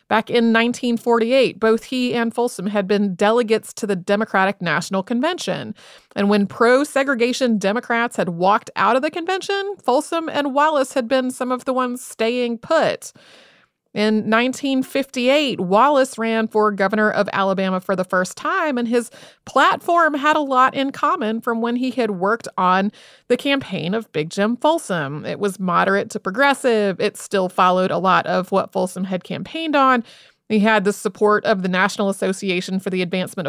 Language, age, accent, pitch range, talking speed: English, 30-49, American, 195-255 Hz, 170 wpm